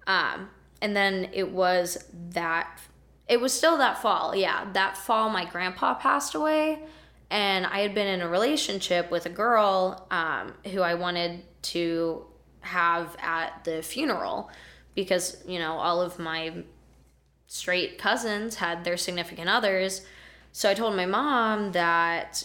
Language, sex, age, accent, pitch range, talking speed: English, female, 10-29, American, 170-200 Hz, 145 wpm